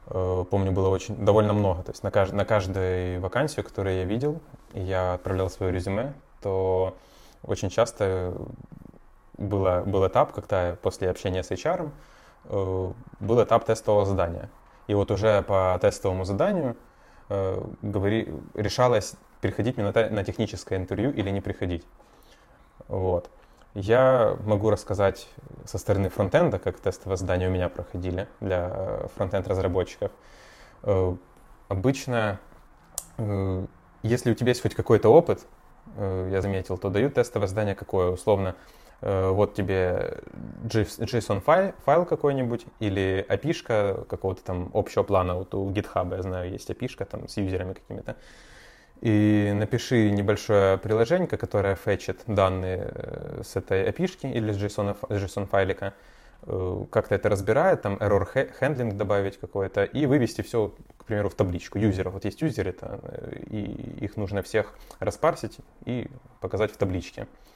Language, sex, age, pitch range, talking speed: Russian, male, 20-39, 95-110 Hz, 130 wpm